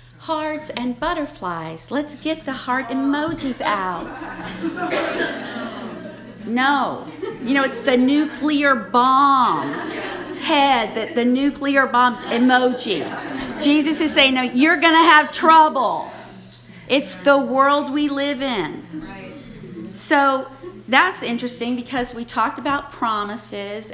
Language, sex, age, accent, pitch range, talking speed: English, female, 50-69, American, 230-300 Hz, 110 wpm